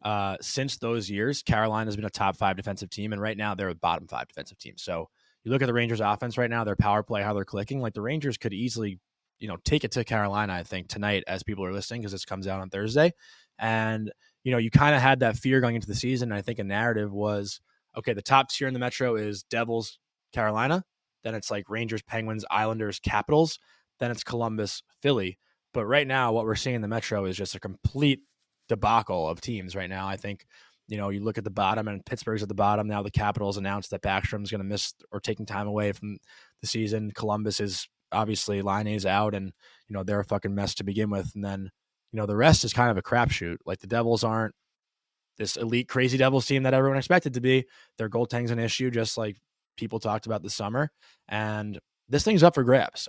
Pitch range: 100-120 Hz